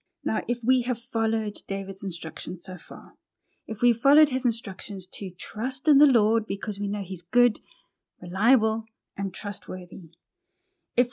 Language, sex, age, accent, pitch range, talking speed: English, female, 30-49, British, 195-240 Hz, 150 wpm